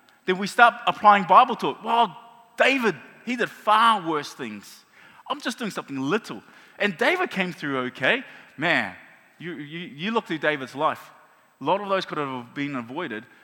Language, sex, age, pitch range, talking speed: English, male, 20-39, 130-200 Hz, 185 wpm